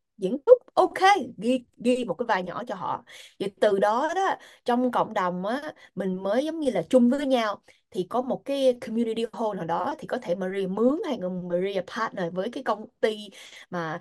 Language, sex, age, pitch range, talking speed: Vietnamese, female, 20-39, 185-265 Hz, 205 wpm